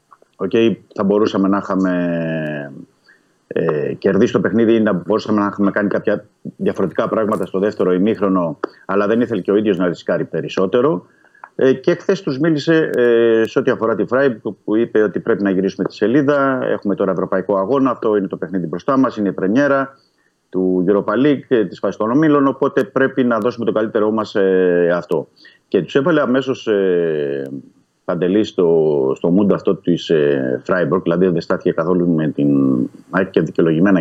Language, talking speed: Greek, 175 wpm